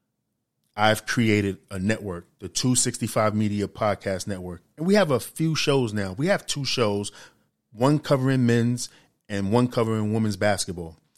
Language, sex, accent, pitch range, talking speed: English, male, American, 100-125 Hz, 150 wpm